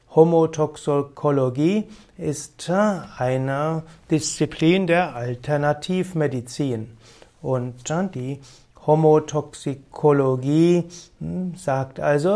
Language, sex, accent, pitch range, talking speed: German, male, German, 135-170 Hz, 55 wpm